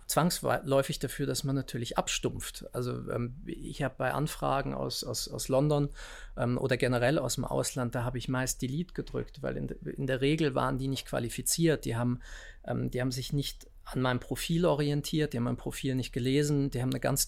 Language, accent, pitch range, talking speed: German, German, 120-140 Hz, 200 wpm